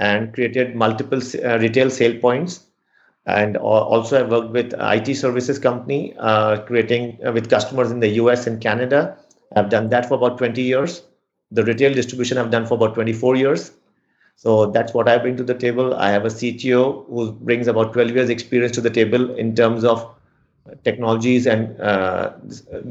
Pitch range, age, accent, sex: 110-125 Hz, 50-69, Indian, male